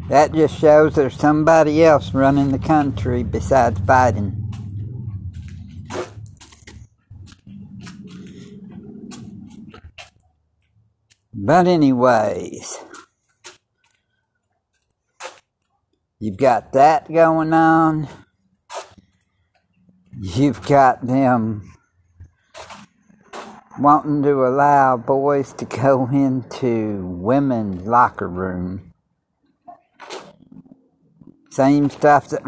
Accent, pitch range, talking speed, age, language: American, 105-145 Hz, 65 wpm, 60-79, English